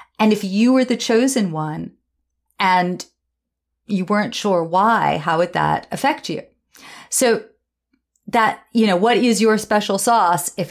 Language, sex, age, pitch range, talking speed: English, female, 40-59, 180-230 Hz, 150 wpm